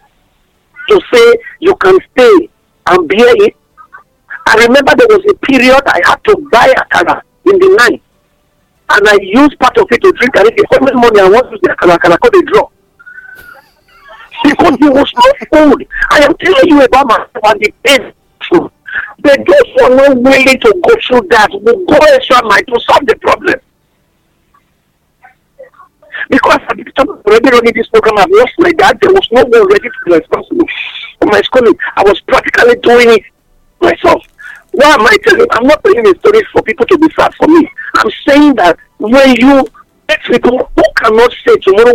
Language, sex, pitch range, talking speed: English, male, 275-430 Hz, 190 wpm